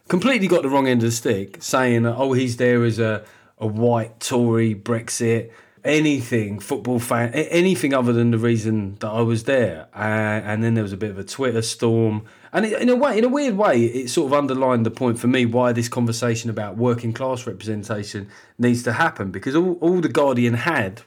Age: 30-49